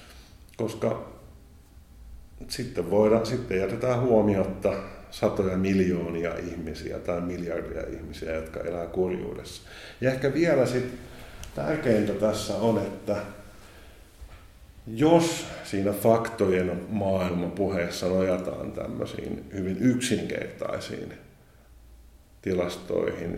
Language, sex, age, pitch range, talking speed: Finnish, male, 50-69, 85-105 Hz, 85 wpm